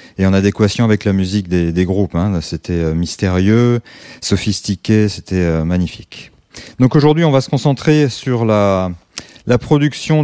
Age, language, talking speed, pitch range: 30-49, French, 160 wpm, 95-125 Hz